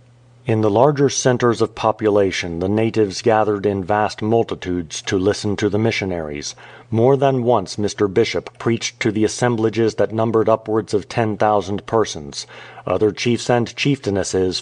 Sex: male